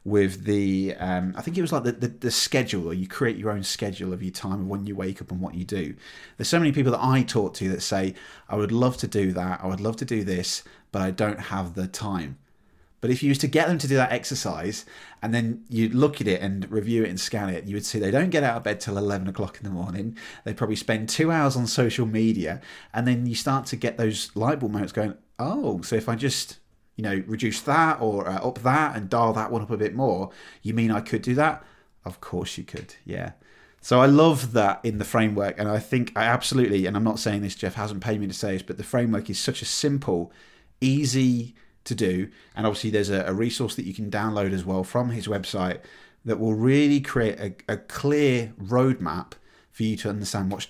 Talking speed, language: 245 wpm, English